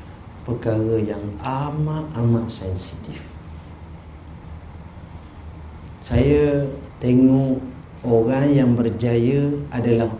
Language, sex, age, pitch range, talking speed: Malay, male, 50-69, 85-130 Hz, 60 wpm